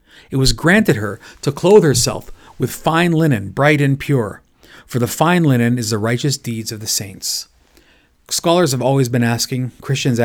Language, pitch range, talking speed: English, 115-155 Hz, 175 wpm